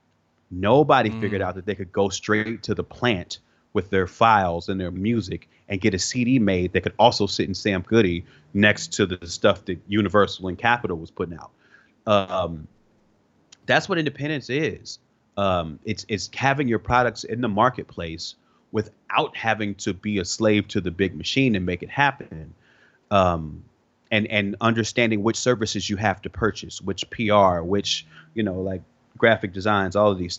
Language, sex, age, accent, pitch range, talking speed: English, male, 30-49, American, 90-115 Hz, 175 wpm